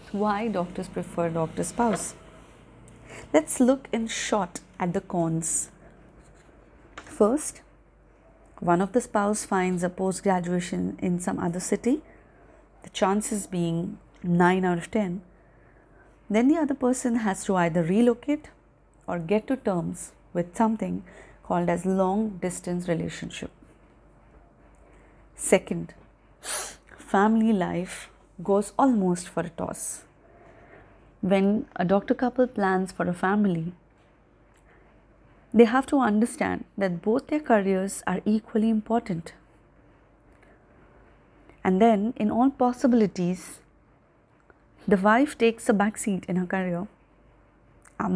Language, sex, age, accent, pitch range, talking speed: English, female, 30-49, Indian, 180-225 Hz, 115 wpm